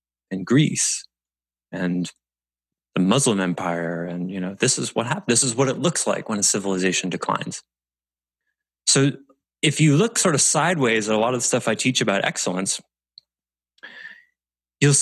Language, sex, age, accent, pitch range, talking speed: English, male, 20-39, American, 90-135 Hz, 165 wpm